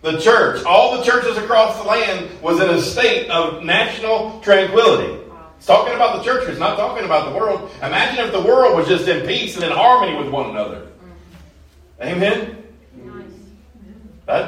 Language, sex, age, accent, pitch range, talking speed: English, male, 40-59, American, 130-205 Hz, 175 wpm